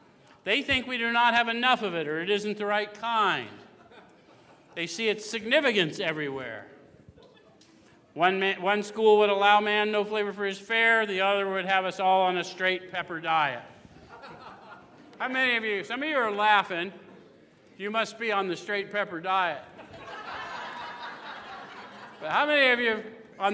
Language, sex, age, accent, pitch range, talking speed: English, male, 50-69, American, 170-215 Hz, 170 wpm